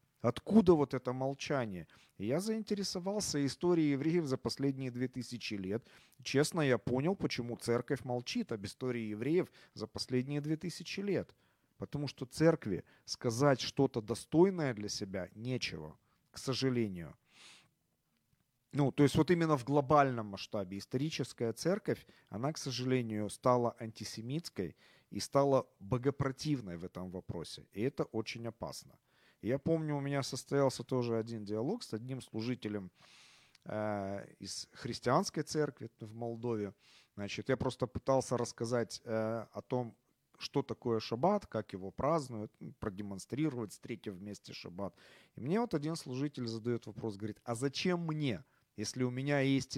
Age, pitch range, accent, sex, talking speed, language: 40-59, 110-145 Hz, native, male, 135 wpm, Ukrainian